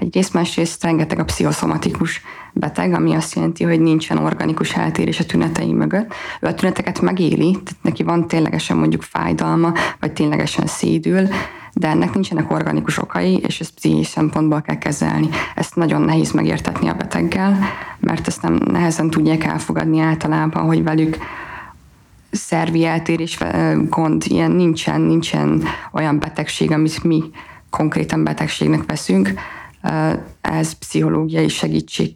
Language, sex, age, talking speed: Hungarian, female, 20-39, 130 wpm